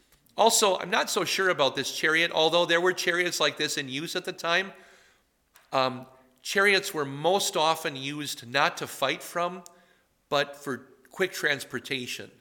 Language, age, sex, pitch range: English, 50-69, male, 130-180 Hz